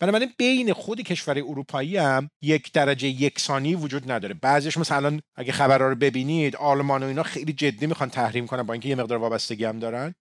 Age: 40-59